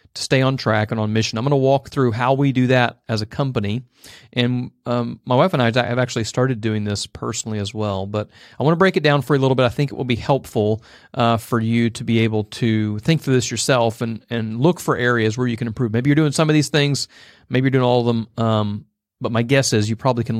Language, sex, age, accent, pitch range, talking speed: English, male, 40-59, American, 110-140 Hz, 270 wpm